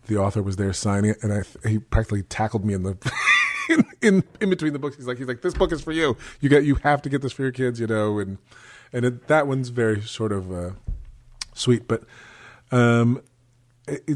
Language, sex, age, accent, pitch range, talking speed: English, male, 30-49, American, 105-125 Hz, 230 wpm